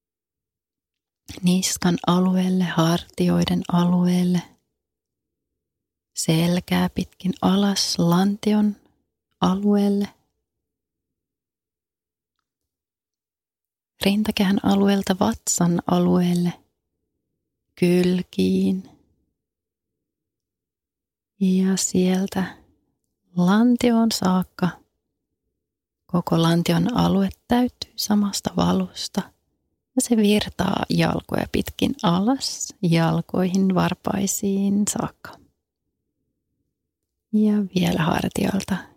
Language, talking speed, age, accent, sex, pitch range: Finnish, 55 wpm, 30-49, native, female, 165-205 Hz